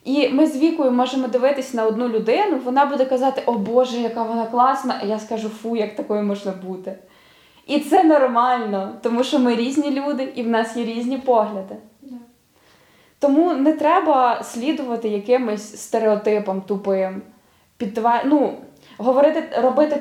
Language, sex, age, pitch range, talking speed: Ukrainian, female, 20-39, 220-275 Hz, 150 wpm